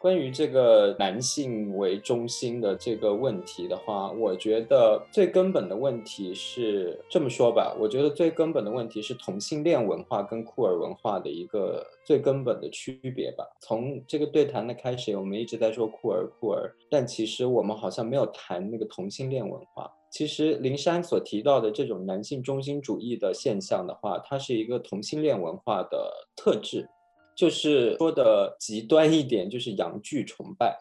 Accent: native